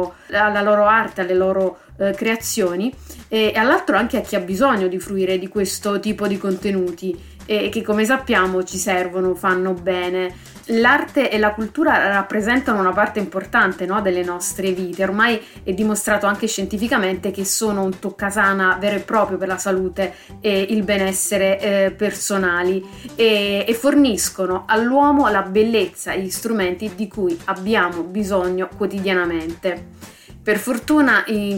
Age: 30-49